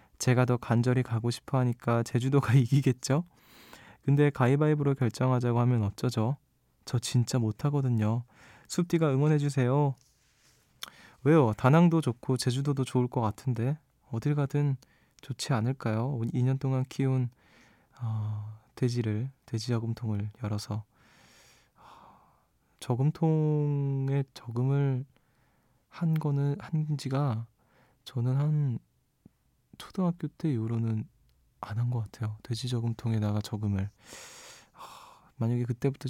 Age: 20-39